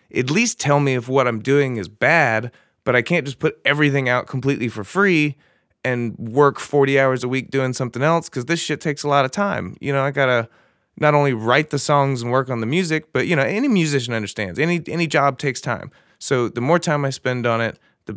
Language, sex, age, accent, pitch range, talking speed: English, male, 30-49, American, 110-145 Hz, 240 wpm